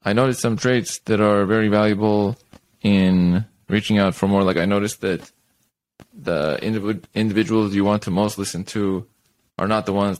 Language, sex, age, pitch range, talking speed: English, male, 20-39, 85-105 Hz, 170 wpm